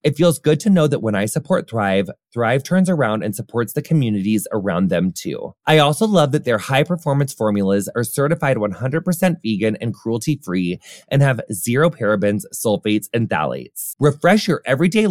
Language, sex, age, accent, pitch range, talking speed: English, male, 20-39, American, 120-175 Hz, 170 wpm